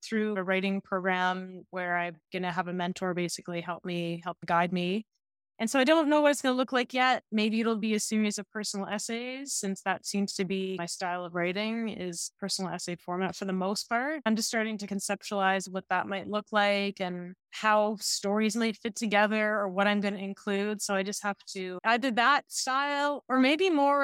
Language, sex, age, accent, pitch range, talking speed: English, female, 20-39, American, 185-225 Hz, 215 wpm